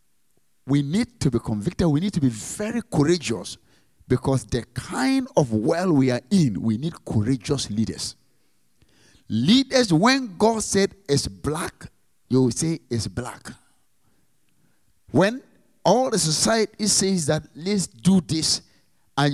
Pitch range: 110-180 Hz